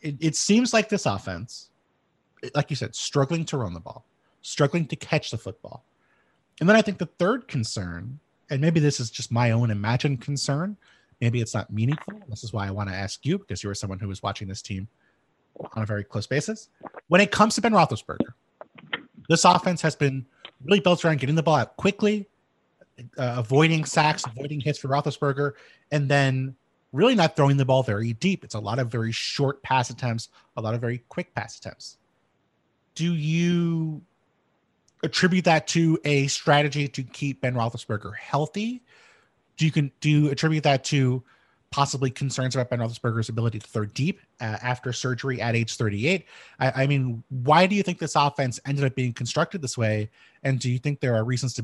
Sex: male